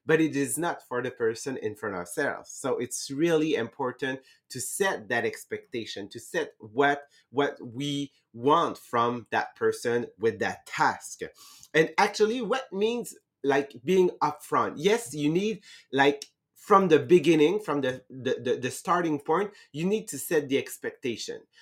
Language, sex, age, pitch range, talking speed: English, male, 30-49, 130-175 Hz, 160 wpm